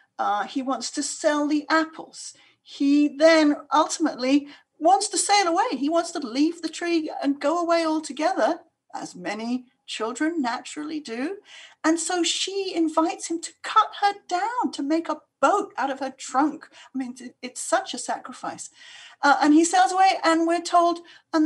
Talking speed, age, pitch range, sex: 170 wpm, 40-59, 255-330 Hz, female